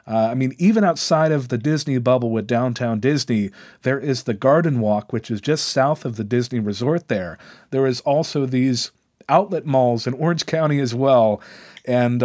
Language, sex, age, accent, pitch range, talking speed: English, male, 40-59, American, 120-155 Hz, 185 wpm